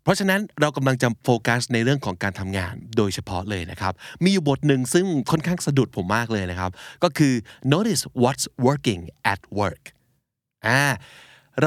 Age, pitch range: 30-49, 110-150 Hz